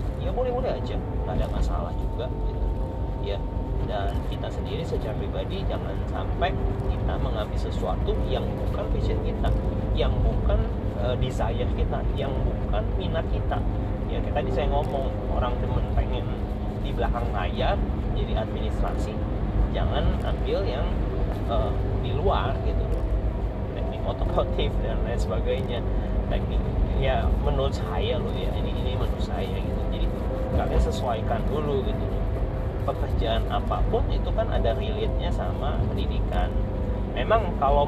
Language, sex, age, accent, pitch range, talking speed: Indonesian, male, 30-49, native, 100-105 Hz, 130 wpm